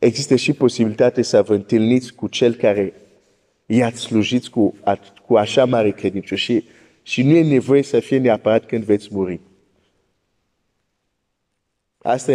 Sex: male